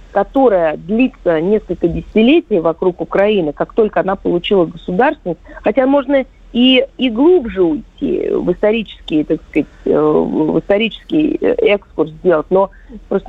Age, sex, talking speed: 40-59, female, 120 wpm